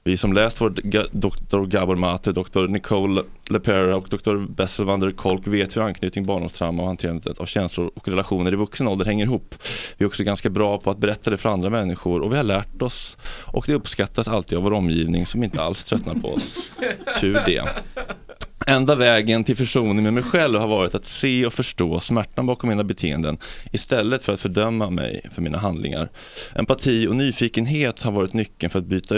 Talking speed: 195 wpm